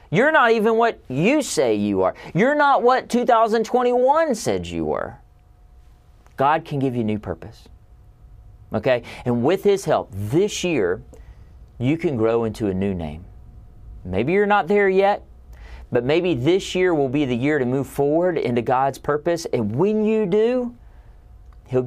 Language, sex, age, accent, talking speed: English, male, 40-59, American, 165 wpm